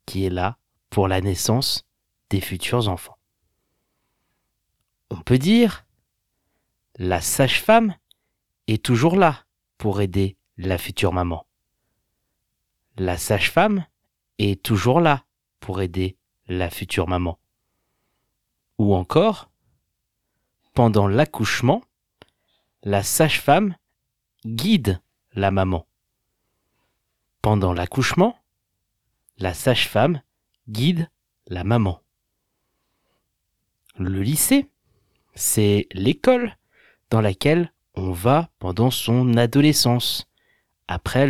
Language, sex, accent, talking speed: French, male, French, 85 wpm